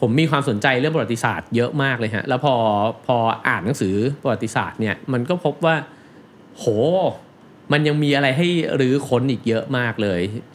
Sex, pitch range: male, 110-145 Hz